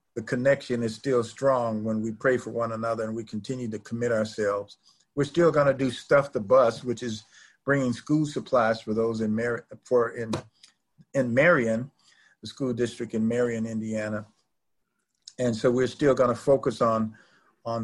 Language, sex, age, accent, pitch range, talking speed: English, male, 50-69, American, 110-135 Hz, 180 wpm